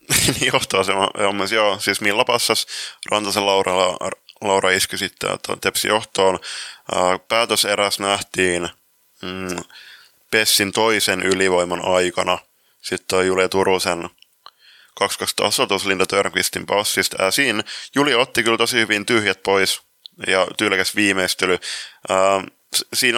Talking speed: 100 wpm